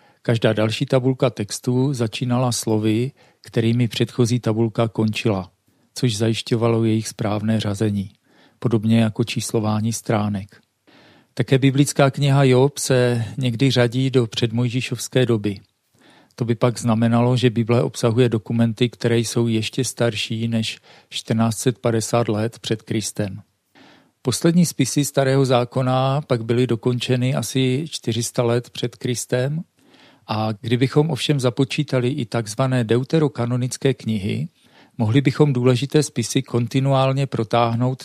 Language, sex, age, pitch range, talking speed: Czech, male, 40-59, 115-130 Hz, 115 wpm